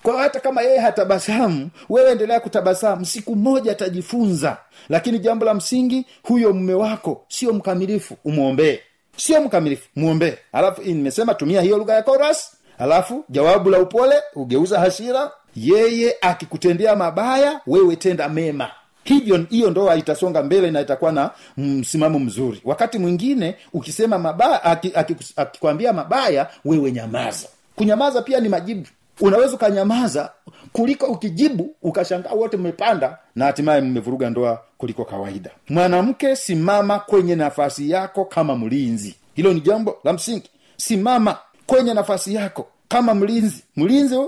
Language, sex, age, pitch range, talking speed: Swahili, male, 50-69, 165-235 Hz, 140 wpm